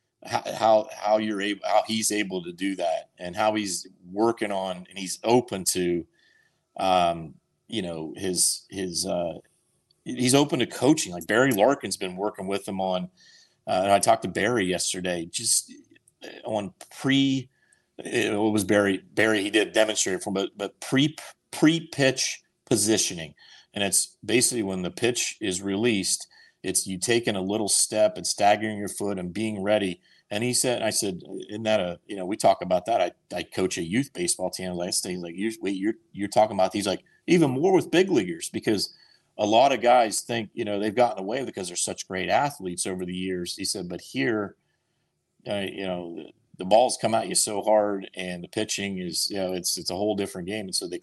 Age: 40-59